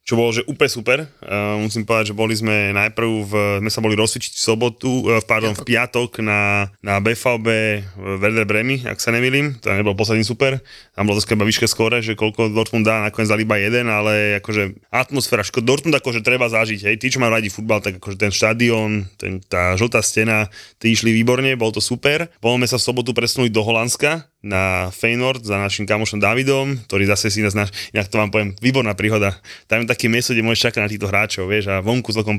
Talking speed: 210 wpm